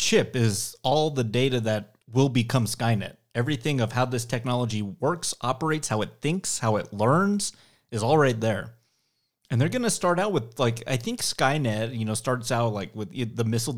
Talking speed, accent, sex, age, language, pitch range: 195 wpm, American, male, 30-49, English, 115-155 Hz